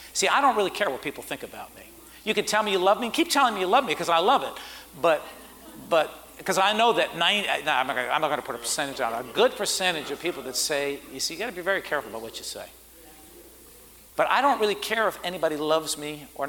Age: 50-69